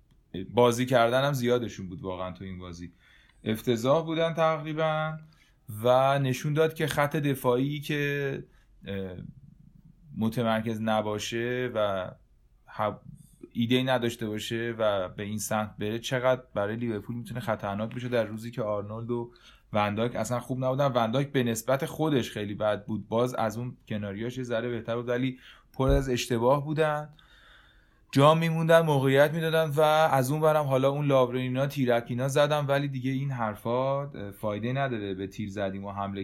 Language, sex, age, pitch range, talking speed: Persian, male, 30-49, 110-145 Hz, 145 wpm